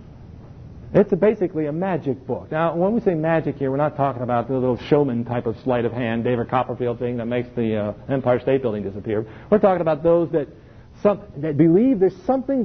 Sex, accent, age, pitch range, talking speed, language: male, American, 50-69, 130-200 Hz, 205 wpm, English